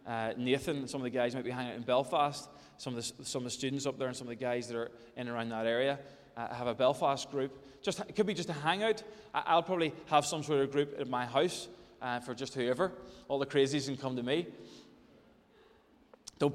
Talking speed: 230 wpm